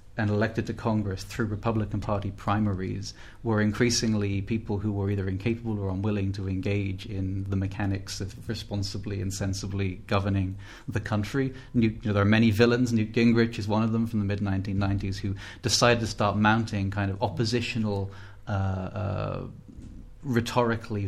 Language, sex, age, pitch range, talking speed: English, male, 30-49, 100-115 Hz, 150 wpm